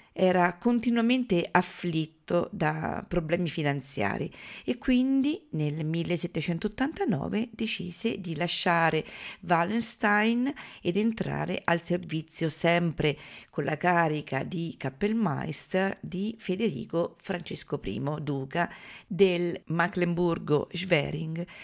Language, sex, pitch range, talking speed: Italian, female, 150-195 Hz, 90 wpm